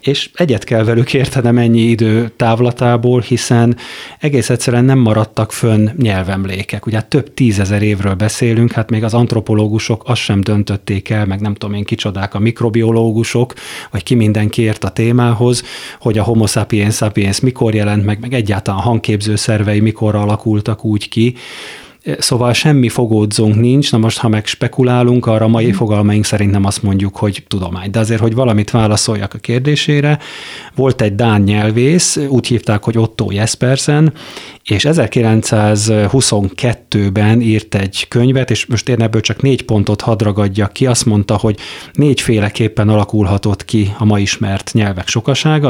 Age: 30-49